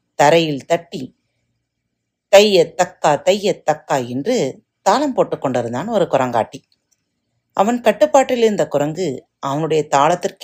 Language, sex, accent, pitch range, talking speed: Tamil, female, native, 140-220 Hz, 105 wpm